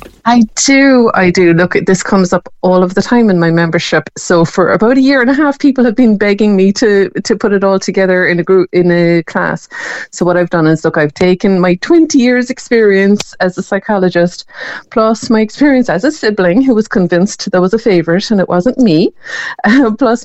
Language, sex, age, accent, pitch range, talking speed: English, female, 30-49, Irish, 165-210 Hz, 215 wpm